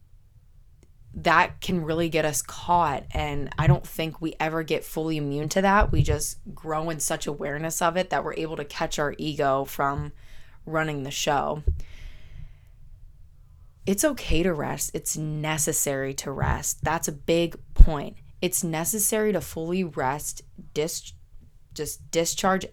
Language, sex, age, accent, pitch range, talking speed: English, female, 20-39, American, 135-165 Hz, 145 wpm